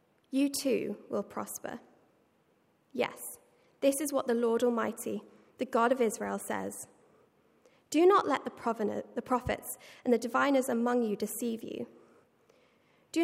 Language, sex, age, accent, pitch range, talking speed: English, female, 20-39, British, 215-280 Hz, 130 wpm